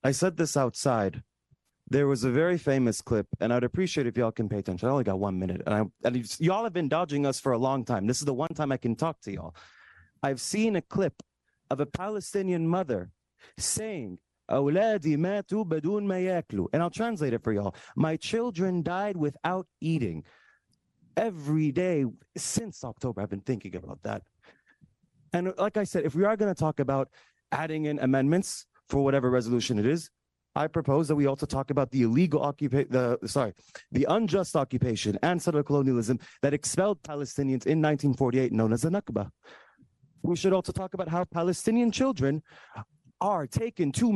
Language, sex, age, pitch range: English, male, 30-49, 130-195 Hz